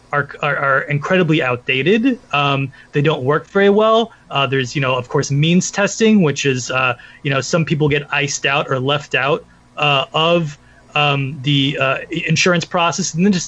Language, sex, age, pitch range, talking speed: English, male, 30-49, 140-185 Hz, 180 wpm